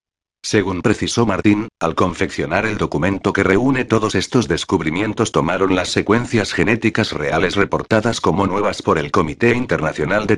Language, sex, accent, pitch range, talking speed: Spanish, male, Spanish, 90-115 Hz, 145 wpm